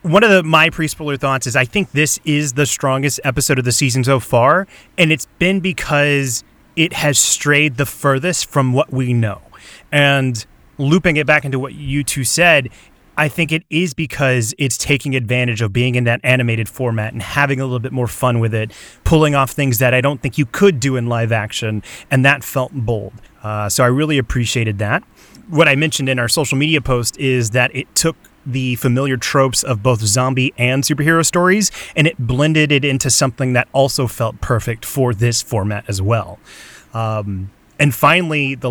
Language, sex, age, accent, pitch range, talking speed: English, male, 30-49, American, 120-150 Hz, 195 wpm